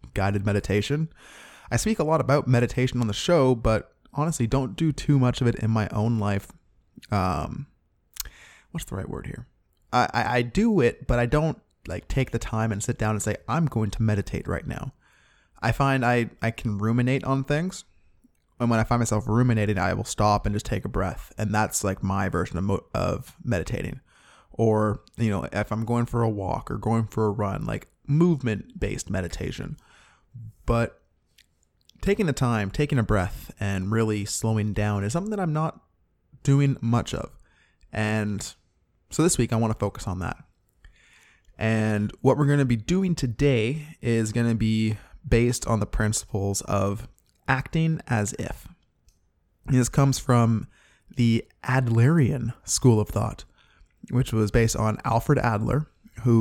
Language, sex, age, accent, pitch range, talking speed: English, male, 20-39, American, 105-130 Hz, 175 wpm